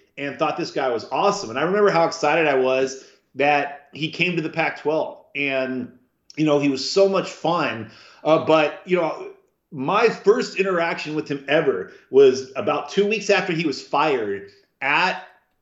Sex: male